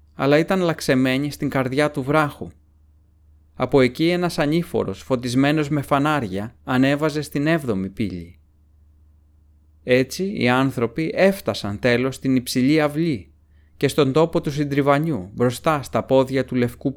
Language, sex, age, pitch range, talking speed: Greek, male, 30-49, 90-145 Hz, 125 wpm